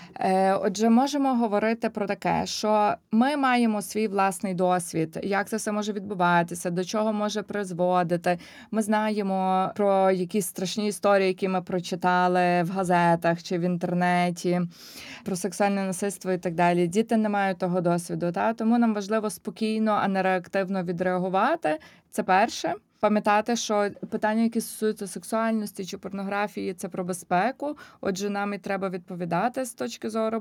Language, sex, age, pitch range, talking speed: Ukrainian, female, 20-39, 185-220 Hz, 150 wpm